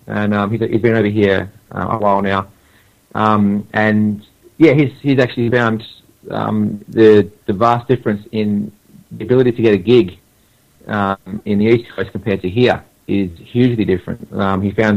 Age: 30-49